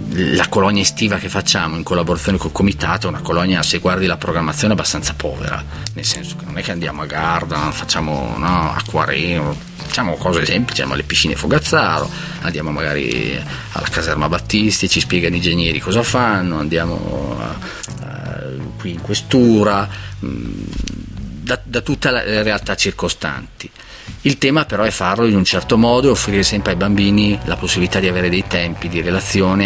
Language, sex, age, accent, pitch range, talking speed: Italian, male, 30-49, native, 80-100 Hz, 165 wpm